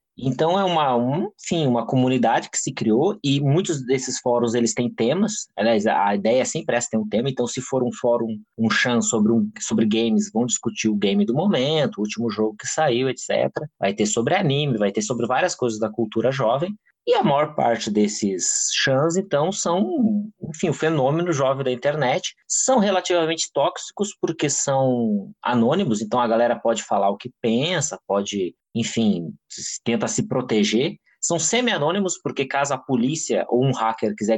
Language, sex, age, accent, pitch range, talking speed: Portuguese, male, 20-39, Brazilian, 110-165 Hz, 185 wpm